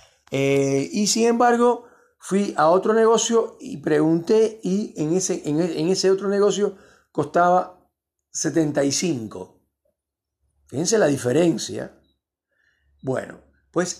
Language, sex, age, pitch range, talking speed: Spanish, male, 40-59, 130-155 Hz, 100 wpm